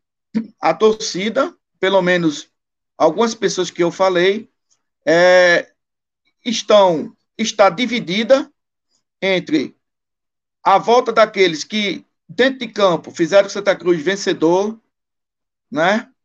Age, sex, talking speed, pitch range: 50-69, male, 95 wpm, 175-225 Hz